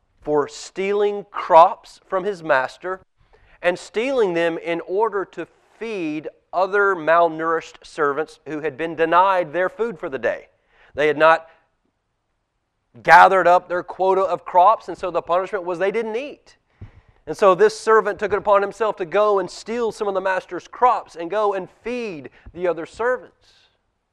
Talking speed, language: 165 wpm, English